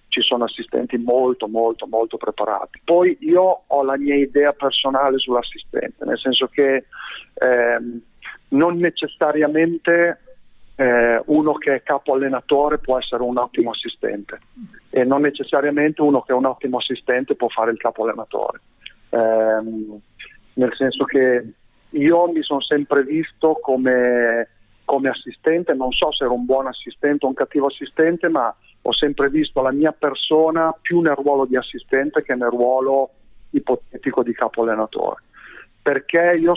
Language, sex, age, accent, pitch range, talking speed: Italian, male, 50-69, native, 125-155 Hz, 150 wpm